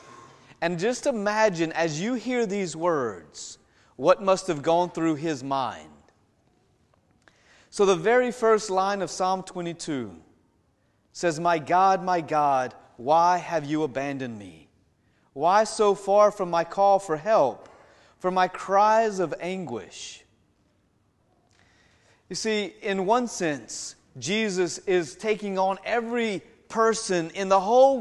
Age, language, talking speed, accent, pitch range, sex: 30-49, English, 130 wpm, American, 175-235 Hz, male